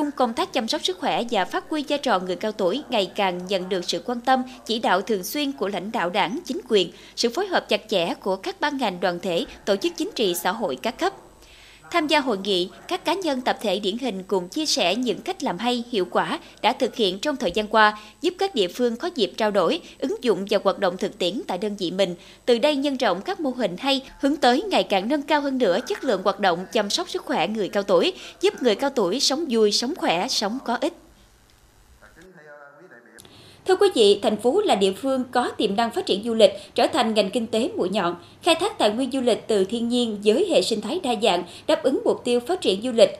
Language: Vietnamese